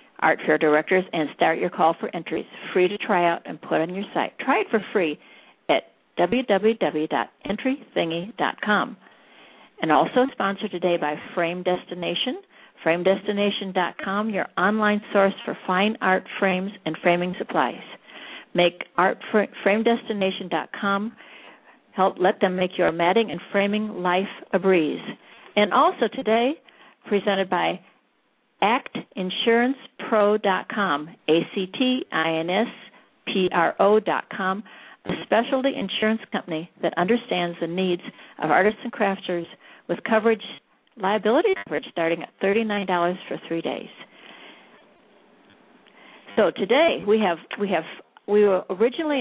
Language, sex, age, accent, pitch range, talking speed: English, female, 60-79, American, 175-215 Hz, 125 wpm